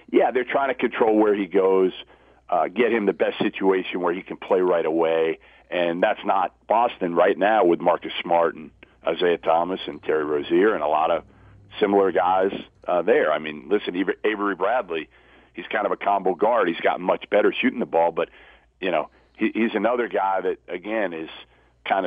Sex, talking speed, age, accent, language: male, 195 wpm, 40-59, American, English